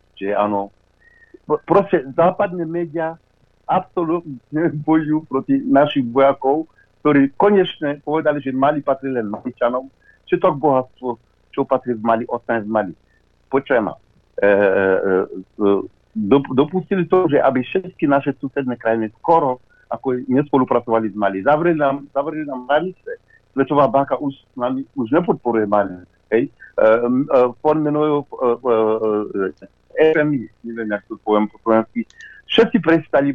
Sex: male